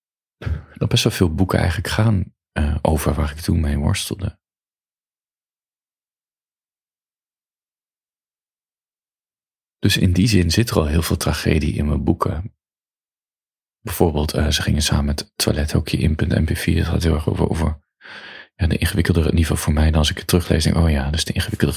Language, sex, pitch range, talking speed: Dutch, male, 80-105 Hz, 160 wpm